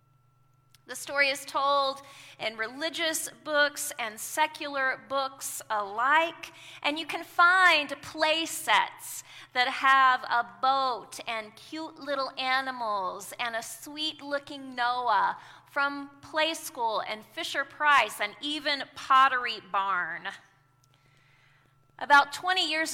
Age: 30-49